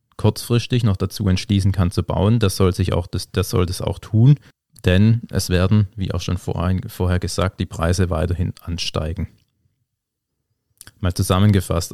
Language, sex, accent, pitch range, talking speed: German, male, German, 90-110 Hz, 135 wpm